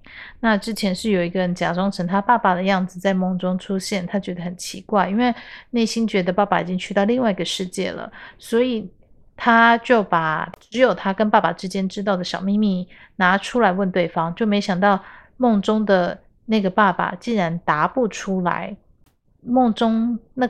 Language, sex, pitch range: Chinese, female, 185-225 Hz